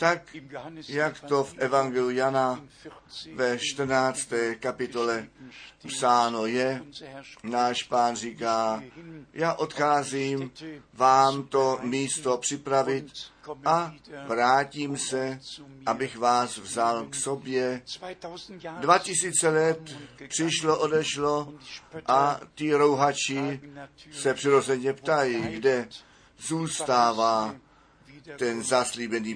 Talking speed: 85 wpm